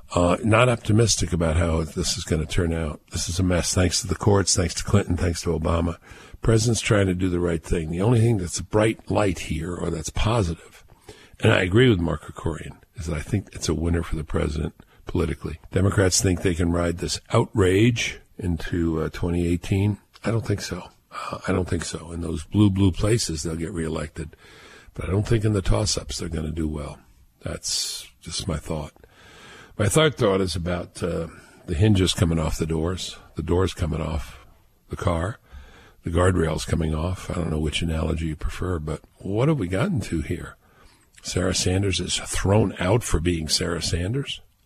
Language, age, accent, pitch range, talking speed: English, 50-69, American, 80-95 Hz, 200 wpm